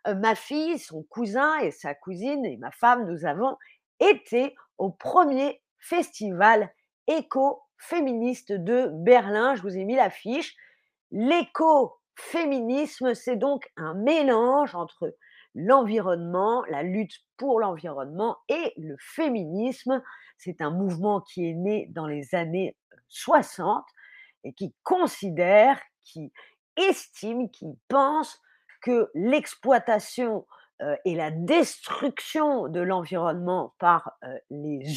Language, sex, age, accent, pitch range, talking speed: French, female, 40-59, French, 185-270 Hz, 115 wpm